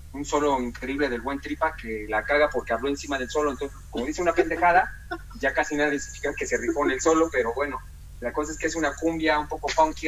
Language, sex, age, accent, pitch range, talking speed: Spanish, male, 30-49, Mexican, 120-155 Hz, 230 wpm